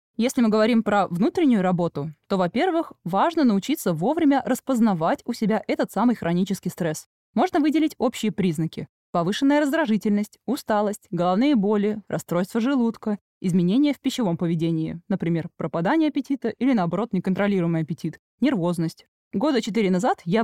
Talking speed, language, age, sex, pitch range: 130 wpm, Russian, 20-39, female, 180-250 Hz